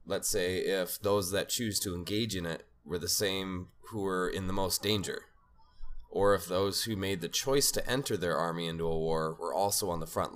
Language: English